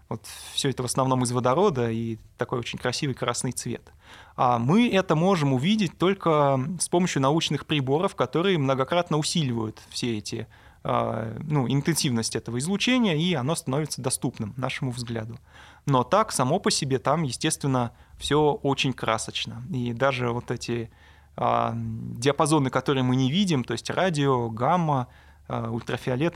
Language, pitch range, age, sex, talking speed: Russian, 120-145 Hz, 20-39, male, 140 wpm